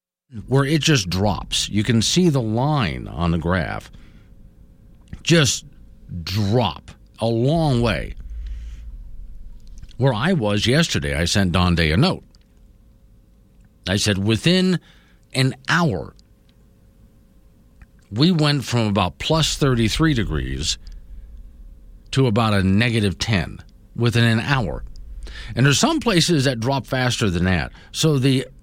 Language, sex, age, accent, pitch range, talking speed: English, male, 50-69, American, 85-125 Hz, 125 wpm